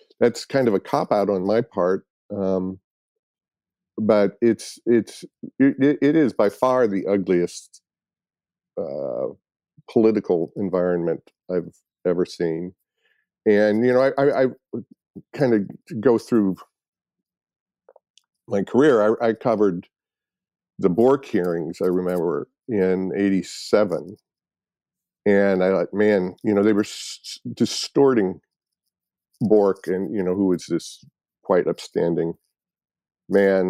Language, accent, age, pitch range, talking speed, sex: English, American, 50-69, 90-115 Hz, 120 wpm, male